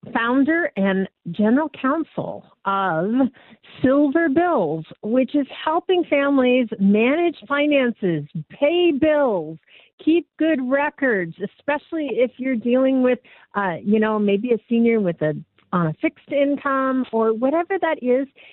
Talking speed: 125 wpm